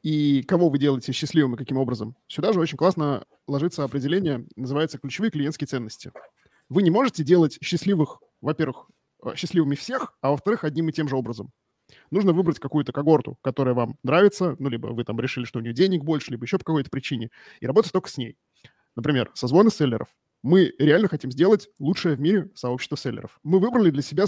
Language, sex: Russian, male